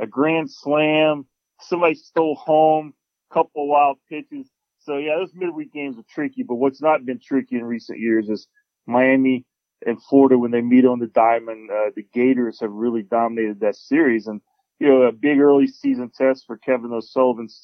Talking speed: 185 wpm